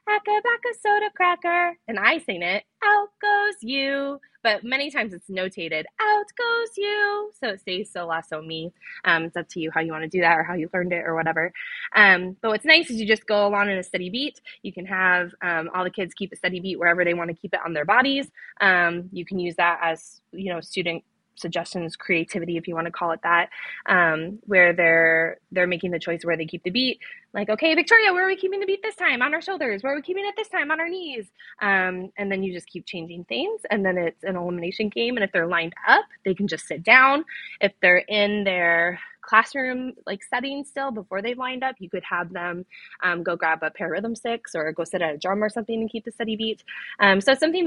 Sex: female